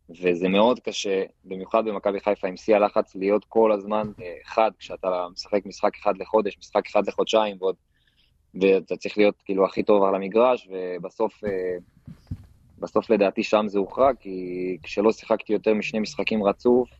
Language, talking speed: Hebrew, 155 wpm